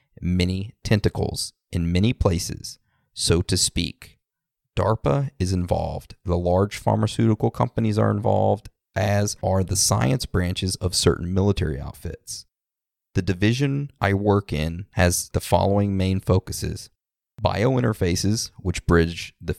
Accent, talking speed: American, 125 wpm